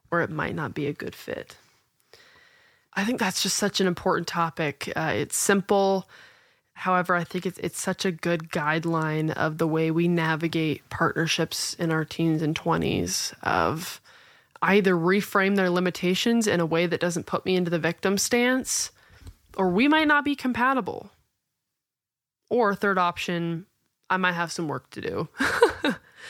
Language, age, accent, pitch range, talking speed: English, 20-39, American, 160-195 Hz, 160 wpm